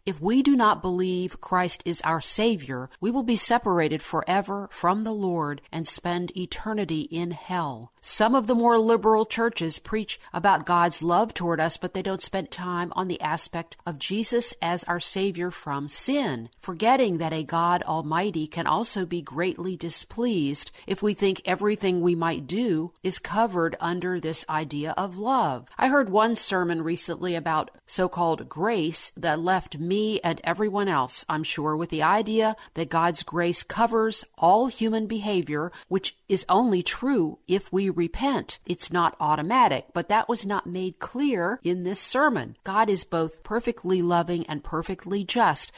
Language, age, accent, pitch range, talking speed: English, 50-69, American, 165-205 Hz, 165 wpm